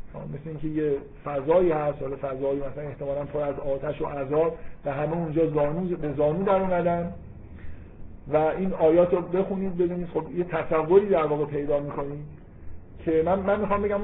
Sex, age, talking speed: male, 50-69, 165 wpm